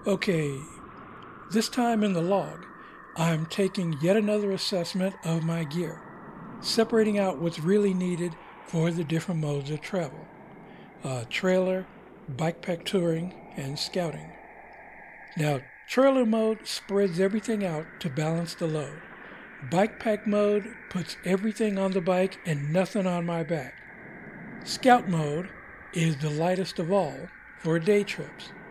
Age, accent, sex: 60-79, American, male